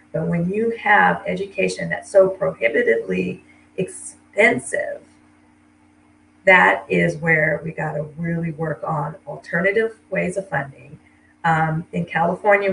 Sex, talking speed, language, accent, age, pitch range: female, 115 wpm, English, American, 40-59, 150-190 Hz